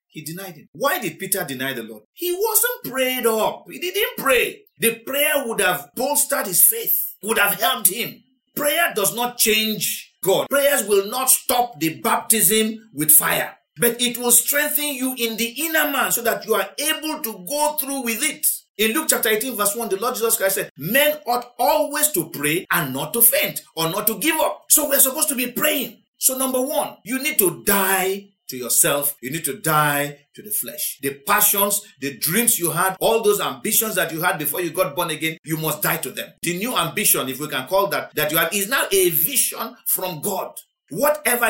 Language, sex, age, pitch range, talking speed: English, male, 50-69, 165-255 Hz, 210 wpm